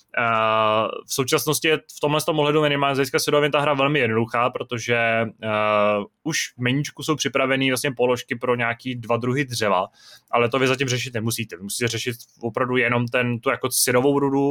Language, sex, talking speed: Czech, male, 180 wpm